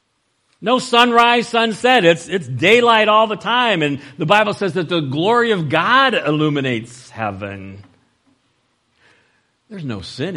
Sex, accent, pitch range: male, American, 110-165 Hz